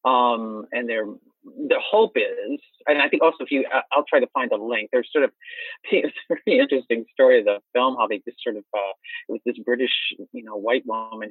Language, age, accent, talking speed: English, 40-59, American, 220 wpm